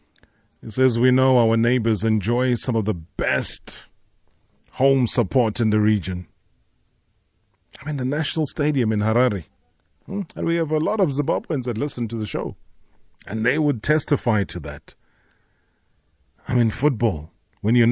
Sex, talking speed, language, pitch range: male, 155 wpm, English, 105-130 Hz